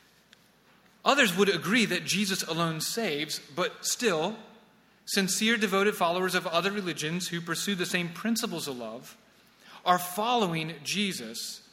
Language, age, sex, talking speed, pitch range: English, 30-49, male, 130 wpm, 165-215 Hz